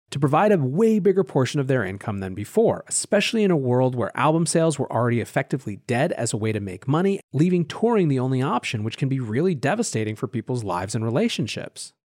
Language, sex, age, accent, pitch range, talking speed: English, male, 30-49, American, 120-165 Hz, 215 wpm